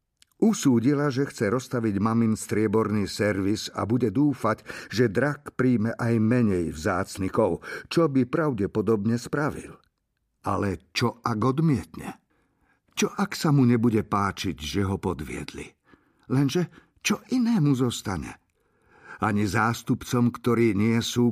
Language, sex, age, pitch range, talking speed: Slovak, male, 50-69, 95-130 Hz, 120 wpm